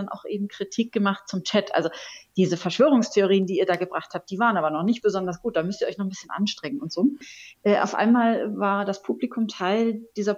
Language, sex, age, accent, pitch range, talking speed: German, female, 30-49, German, 180-225 Hz, 230 wpm